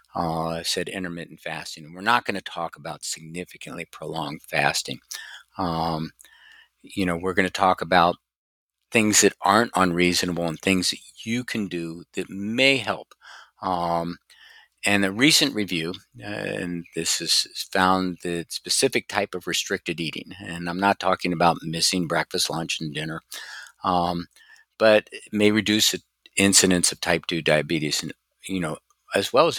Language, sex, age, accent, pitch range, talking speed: English, male, 50-69, American, 85-105 Hz, 160 wpm